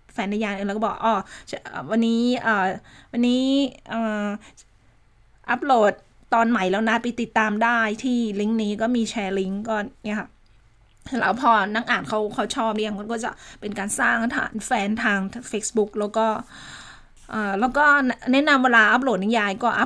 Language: Thai